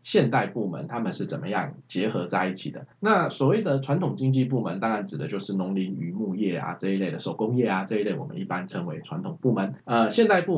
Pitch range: 95-140 Hz